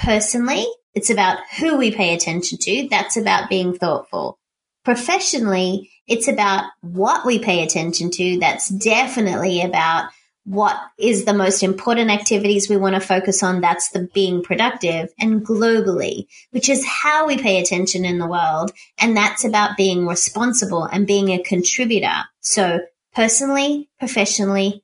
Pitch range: 185-250 Hz